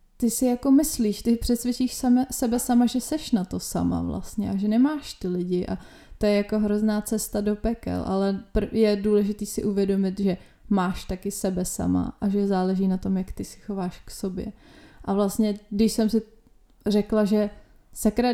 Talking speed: 185 wpm